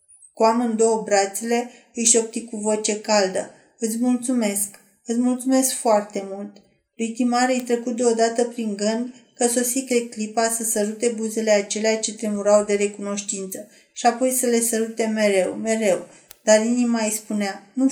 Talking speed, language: 145 wpm, Romanian